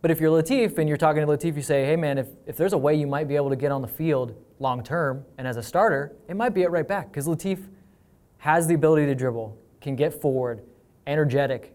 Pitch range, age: 135-165 Hz, 20-39